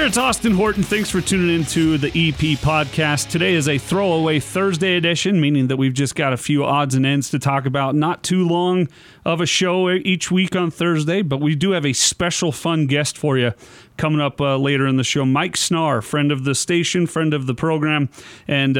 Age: 30-49